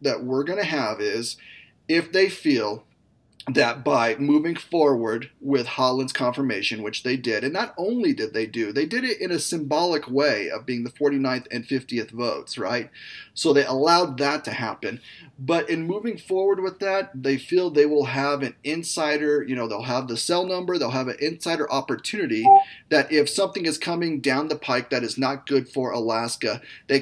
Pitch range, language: 130-170 Hz, English